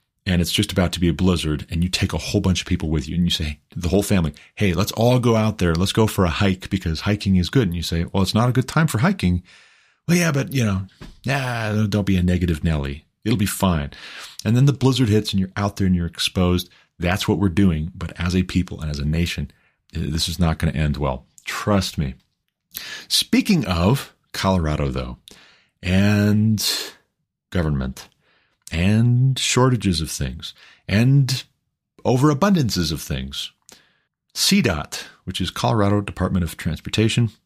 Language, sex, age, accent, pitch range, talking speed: English, male, 40-59, American, 85-105 Hz, 190 wpm